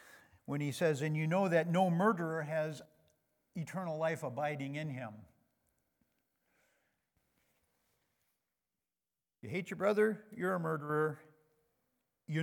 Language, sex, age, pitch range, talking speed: English, male, 50-69, 140-180 Hz, 110 wpm